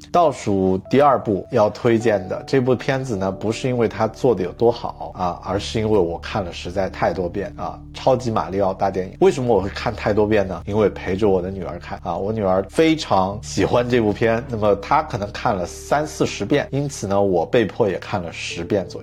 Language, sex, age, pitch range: Chinese, male, 50-69, 95-120 Hz